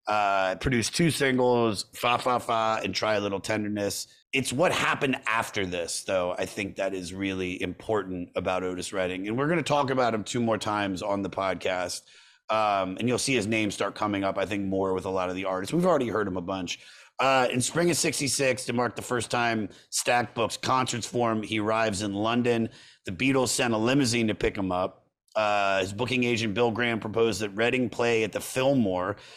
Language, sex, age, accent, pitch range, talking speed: English, male, 30-49, American, 100-130 Hz, 215 wpm